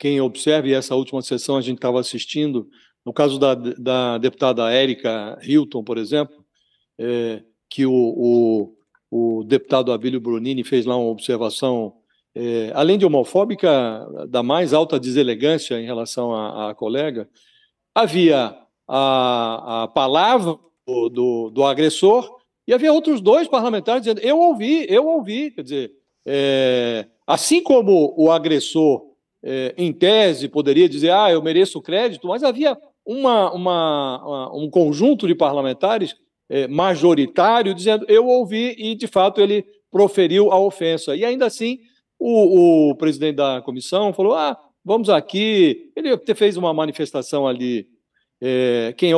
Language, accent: Portuguese, Brazilian